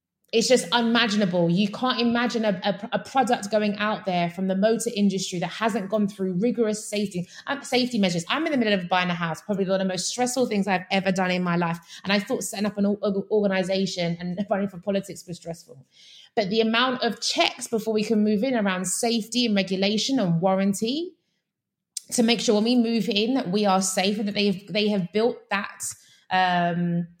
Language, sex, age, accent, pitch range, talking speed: English, female, 20-39, British, 190-235 Hz, 205 wpm